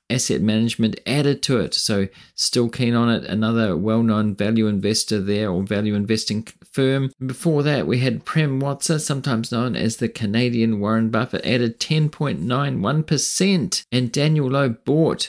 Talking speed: 150 wpm